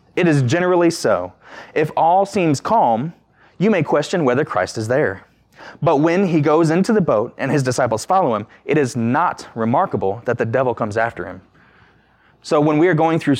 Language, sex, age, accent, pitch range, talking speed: English, male, 20-39, American, 115-160 Hz, 195 wpm